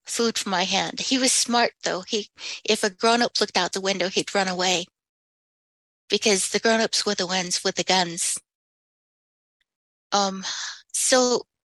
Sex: female